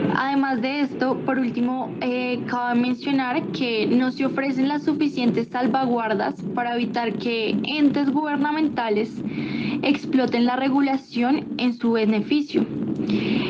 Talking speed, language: 115 wpm, Spanish